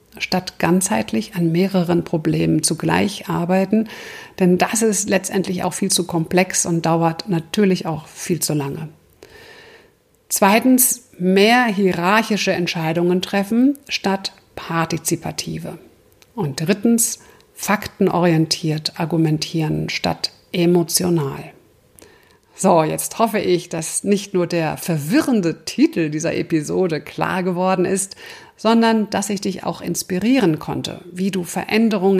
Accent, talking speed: German, 110 wpm